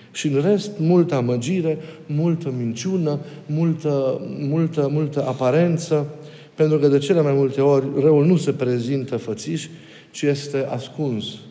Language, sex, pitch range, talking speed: Romanian, male, 125-155 Hz, 135 wpm